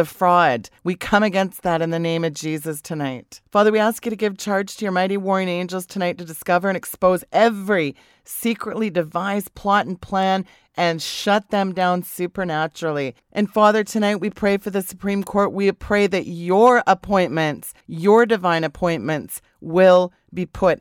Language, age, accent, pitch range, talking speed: English, 40-59, American, 165-195 Hz, 170 wpm